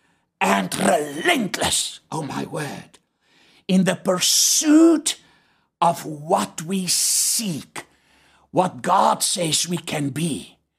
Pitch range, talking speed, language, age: 160-205 Hz, 100 wpm, English, 60-79